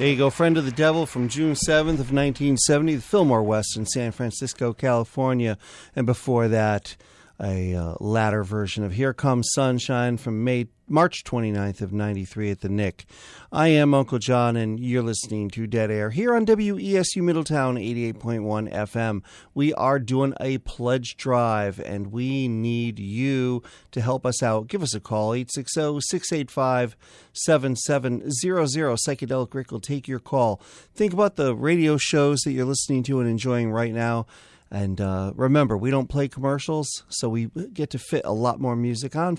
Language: English